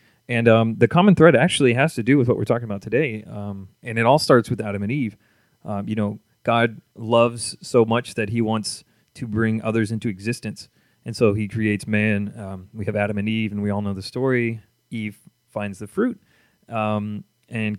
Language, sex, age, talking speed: English, male, 30-49, 210 wpm